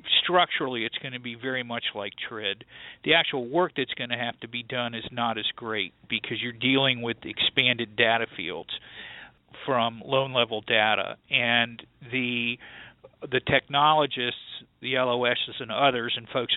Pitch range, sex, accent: 115-135 Hz, male, American